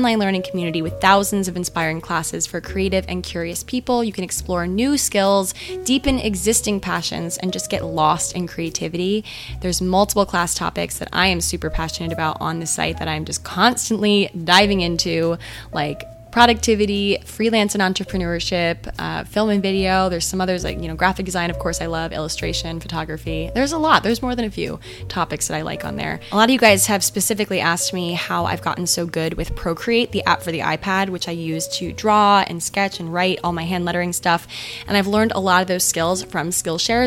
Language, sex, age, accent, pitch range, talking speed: English, female, 20-39, American, 165-210 Hz, 205 wpm